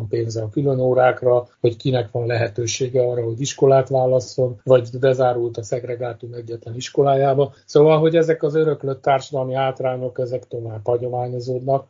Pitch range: 125-150 Hz